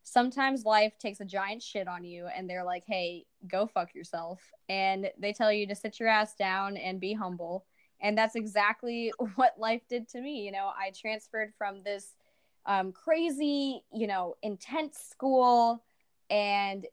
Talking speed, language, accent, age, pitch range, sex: 170 wpm, English, American, 10-29, 190-225 Hz, female